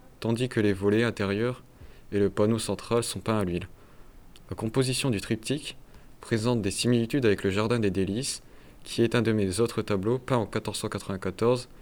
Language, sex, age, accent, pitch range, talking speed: French, male, 20-39, French, 105-120 Hz, 180 wpm